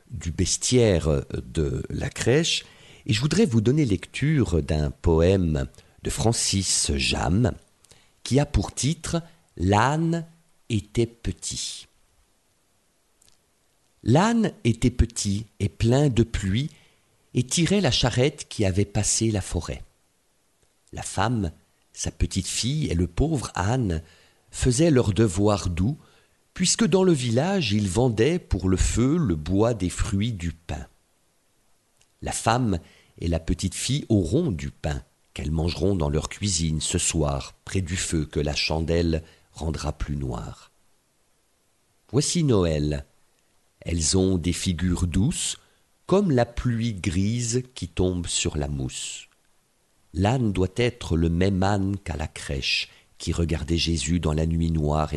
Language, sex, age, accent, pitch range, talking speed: French, male, 50-69, French, 85-120 Hz, 135 wpm